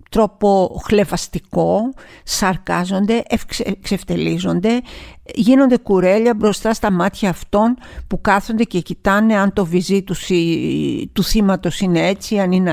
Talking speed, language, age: 110 wpm, Greek, 50-69